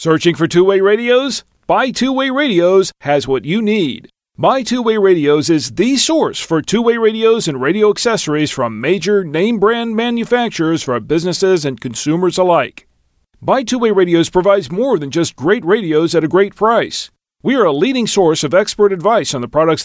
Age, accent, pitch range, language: 40-59, American, 160-225 Hz, English